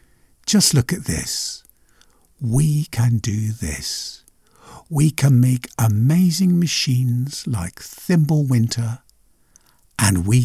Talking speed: 105 wpm